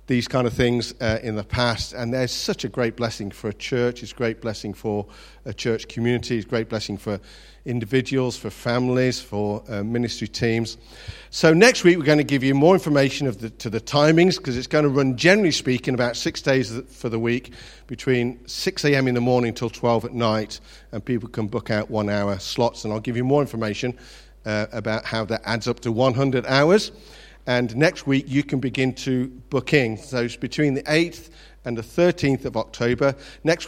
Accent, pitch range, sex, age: British, 115-135 Hz, male, 50-69